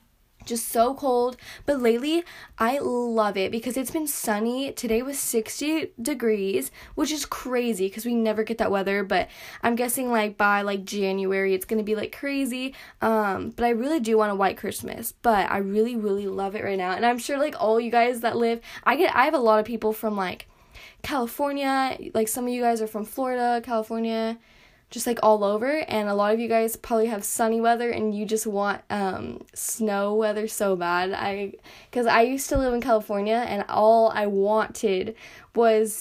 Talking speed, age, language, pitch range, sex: 200 wpm, 10-29, English, 205-240 Hz, female